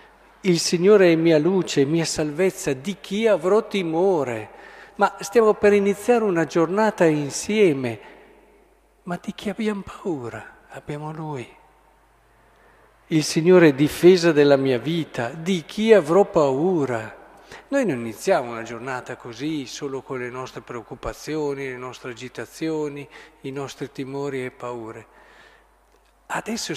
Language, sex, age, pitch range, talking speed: Italian, male, 50-69, 125-175 Hz, 125 wpm